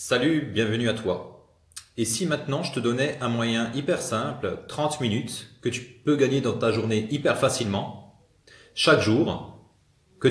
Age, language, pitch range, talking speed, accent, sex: 30-49, French, 105-125 Hz, 165 wpm, French, male